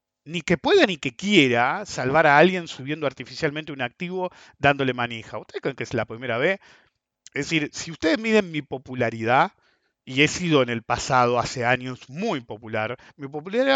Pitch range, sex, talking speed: 125-175 Hz, male, 180 wpm